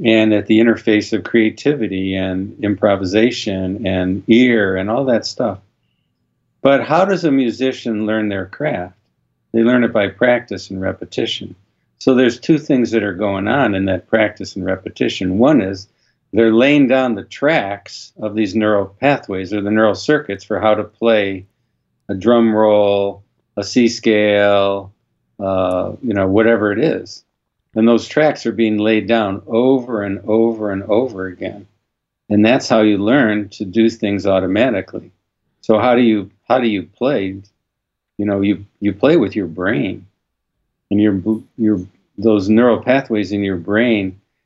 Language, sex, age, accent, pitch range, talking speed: English, male, 50-69, American, 100-115 Hz, 160 wpm